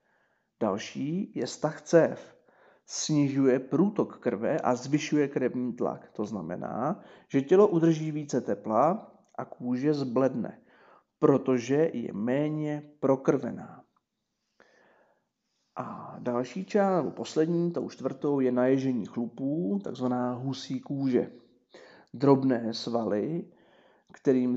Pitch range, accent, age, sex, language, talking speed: 125-160 Hz, native, 40-59, male, Czech, 100 wpm